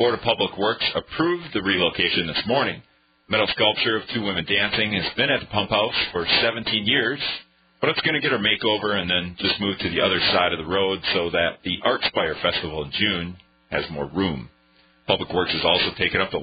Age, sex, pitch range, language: 40-59, male, 65-105 Hz, English